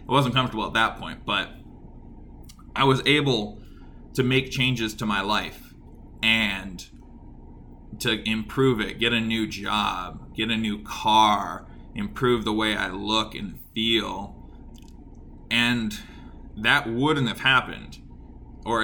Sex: male